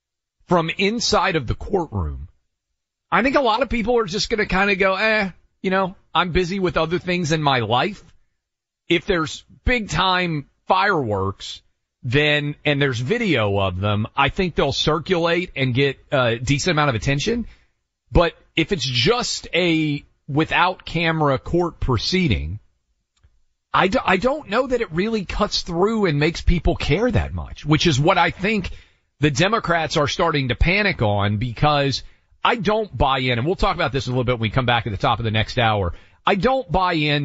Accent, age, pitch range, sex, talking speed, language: American, 40-59, 115-180 Hz, male, 185 wpm, English